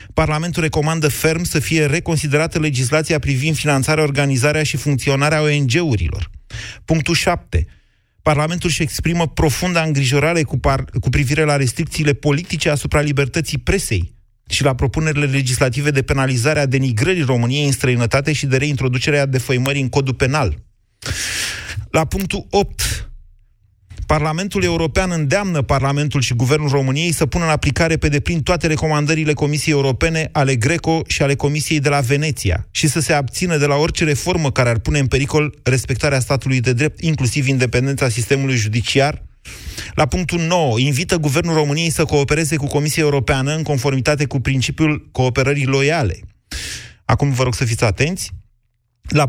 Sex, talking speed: male, 145 wpm